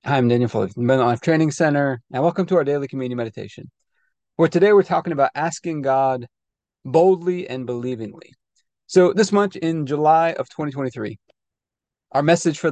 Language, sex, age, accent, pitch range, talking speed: English, male, 30-49, American, 130-175 Hz, 170 wpm